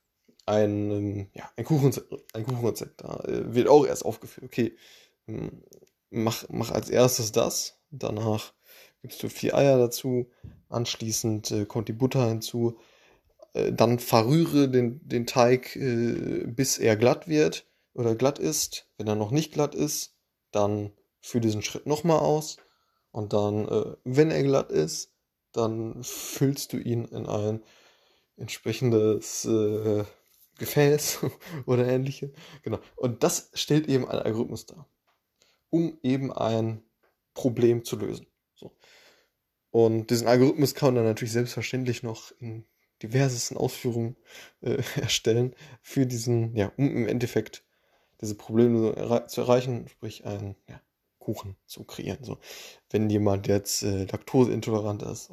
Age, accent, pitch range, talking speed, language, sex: 20-39, German, 110-130 Hz, 130 wpm, German, male